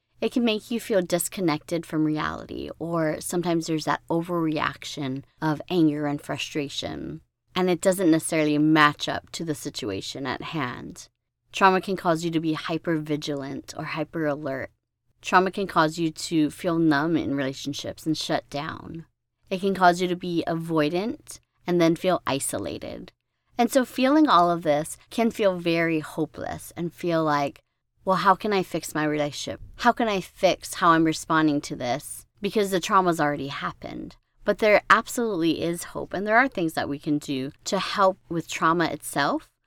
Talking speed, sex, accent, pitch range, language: 170 wpm, female, American, 150-190 Hz, English